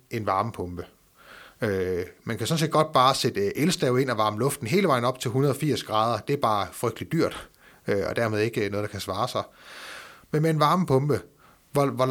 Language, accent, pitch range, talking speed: Danish, native, 105-140 Hz, 190 wpm